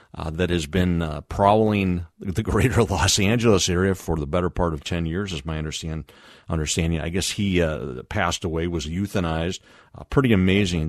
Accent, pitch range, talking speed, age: American, 80-105 Hz, 180 wpm, 40-59